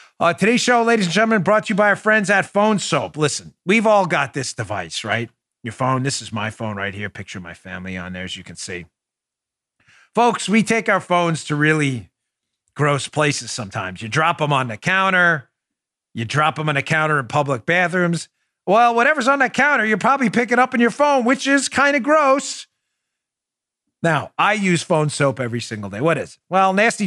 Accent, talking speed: American, 205 wpm